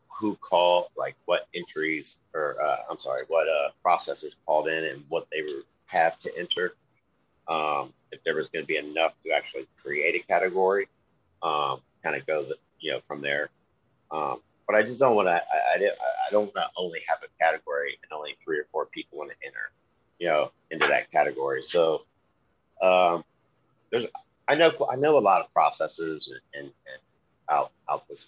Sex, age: male, 30-49